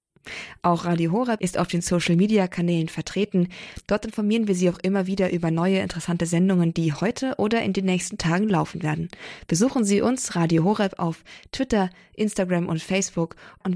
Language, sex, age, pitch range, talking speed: German, female, 20-39, 170-200 Hz, 180 wpm